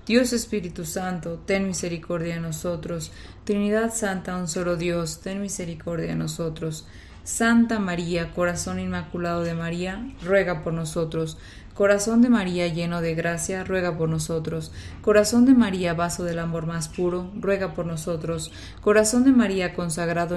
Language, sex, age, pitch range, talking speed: Spanish, female, 20-39, 170-200 Hz, 145 wpm